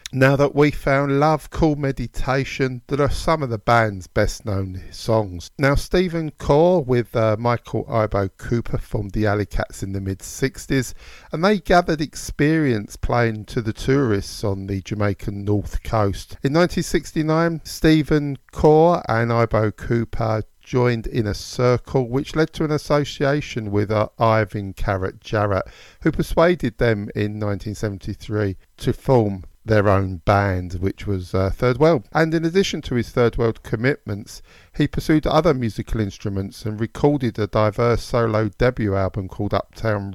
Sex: male